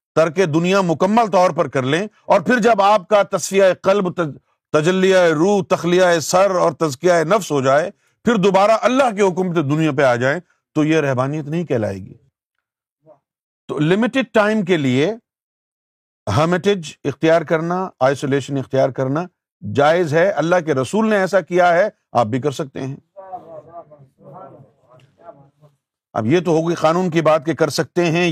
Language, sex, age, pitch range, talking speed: Urdu, male, 50-69, 140-185 Hz, 155 wpm